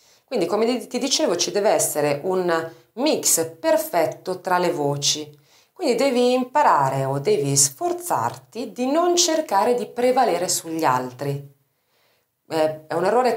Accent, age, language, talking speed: native, 40-59, Italian, 135 wpm